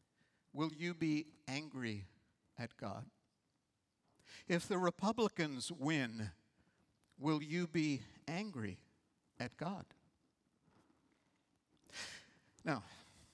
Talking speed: 75 wpm